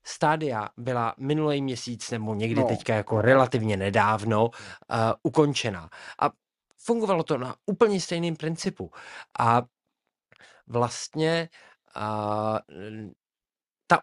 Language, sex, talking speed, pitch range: Czech, male, 100 wpm, 110-145 Hz